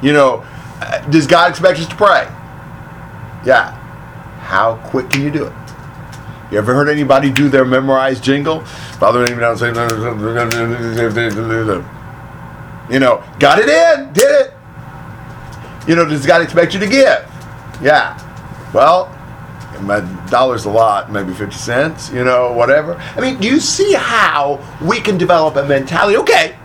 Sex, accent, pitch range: male, American, 130-185 Hz